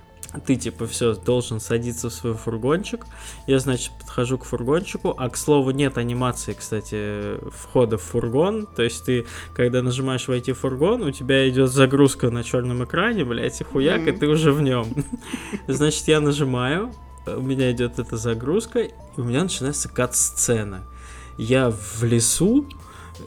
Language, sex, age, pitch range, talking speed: Russian, male, 20-39, 115-145 Hz, 160 wpm